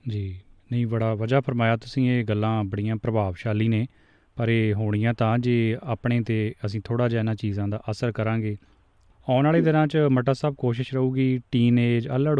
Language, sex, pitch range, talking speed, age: Punjabi, male, 105-115 Hz, 175 wpm, 30-49